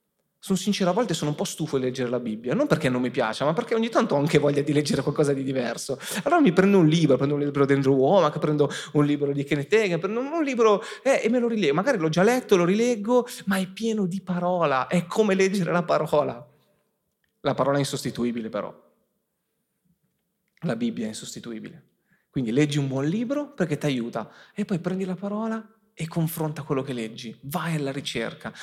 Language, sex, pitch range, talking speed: Italian, male, 140-205 Hz, 210 wpm